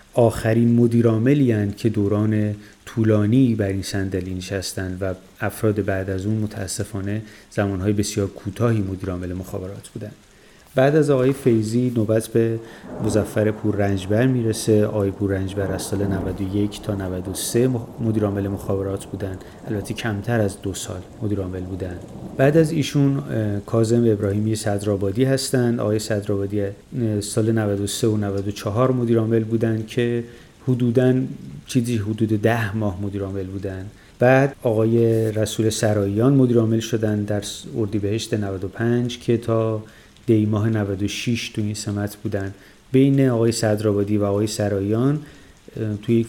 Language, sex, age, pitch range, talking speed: Persian, male, 30-49, 100-120 Hz, 135 wpm